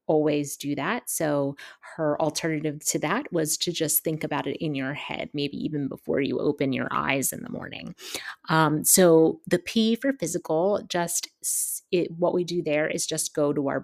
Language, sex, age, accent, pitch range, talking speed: English, female, 30-49, American, 145-185 Hz, 190 wpm